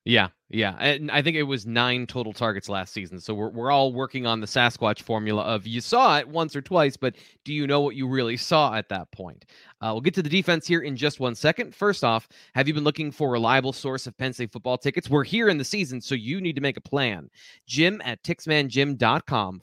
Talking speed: 245 wpm